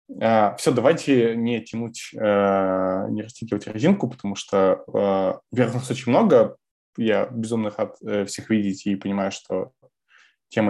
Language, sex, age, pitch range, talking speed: Russian, male, 20-39, 100-115 Hz, 120 wpm